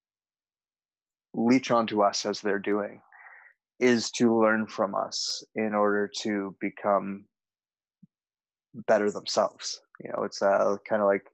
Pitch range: 100-105 Hz